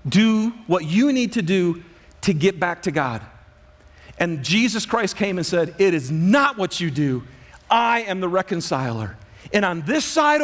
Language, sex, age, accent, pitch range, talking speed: English, male, 40-59, American, 175-280 Hz, 180 wpm